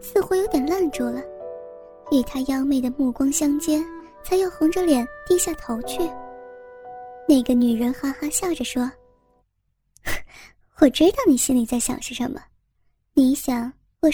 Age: 10-29